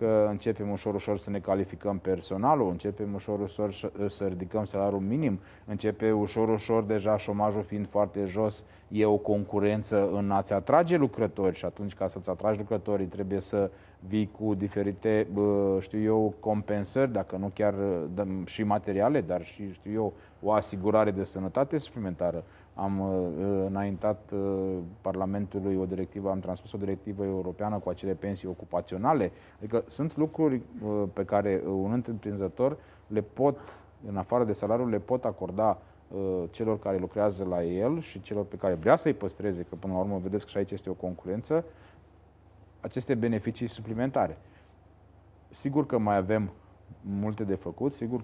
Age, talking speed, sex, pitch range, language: 30-49, 155 wpm, male, 95-110 Hz, Romanian